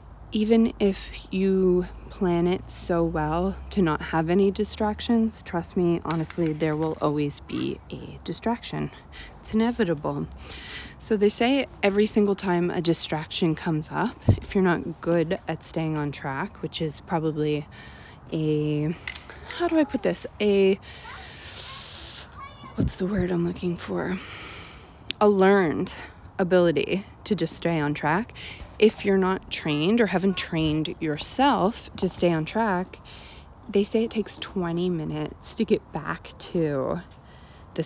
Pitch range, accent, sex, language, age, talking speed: 155-195 Hz, American, female, English, 20-39, 140 wpm